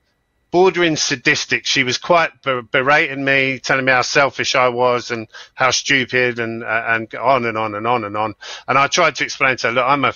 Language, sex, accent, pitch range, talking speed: English, male, British, 115-135 Hz, 215 wpm